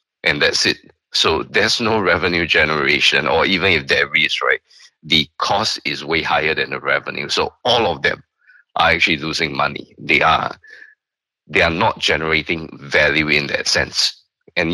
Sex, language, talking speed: male, English, 165 wpm